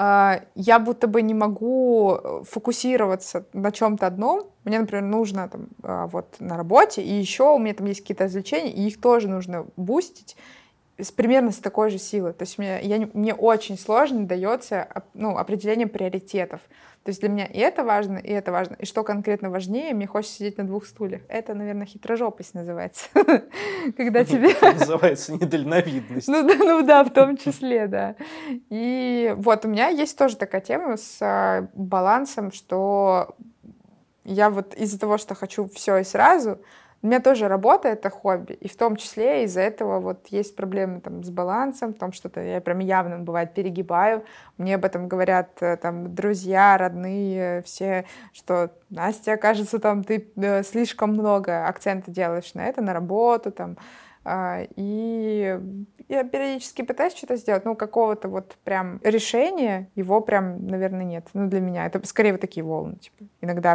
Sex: female